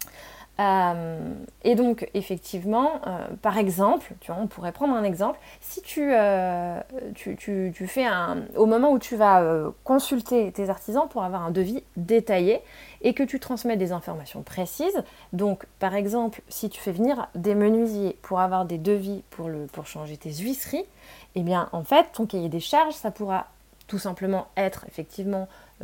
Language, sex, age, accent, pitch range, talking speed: French, female, 20-39, French, 185-230 Hz, 165 wpm